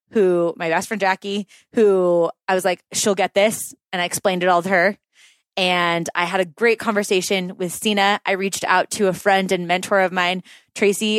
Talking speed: 205 wpm